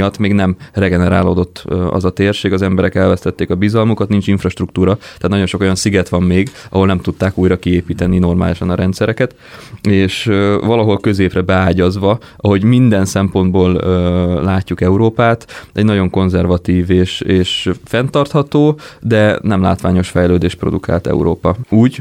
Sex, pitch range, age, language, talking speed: male, 90-105 Hz, 20-39, Hungarian, 140 wpm